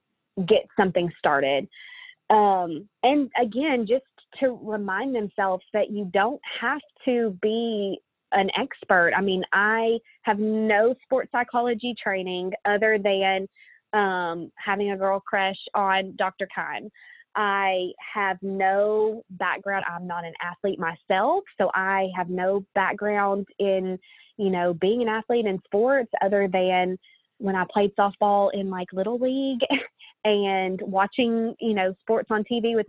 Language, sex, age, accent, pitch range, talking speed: English, female, 20-39, American, 190-225 Hz, 140 wpm